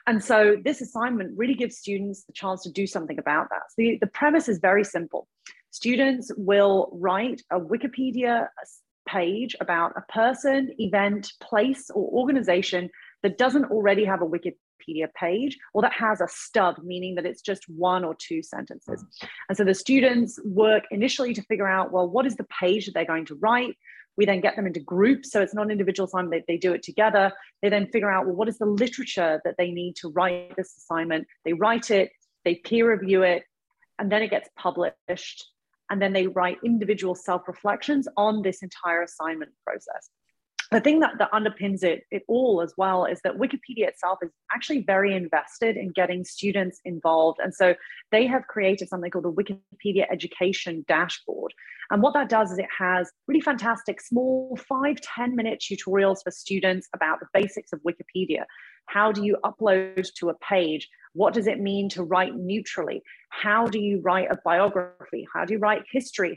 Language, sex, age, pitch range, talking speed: English, female, 30-49, 180-230 Hz, 185 wpm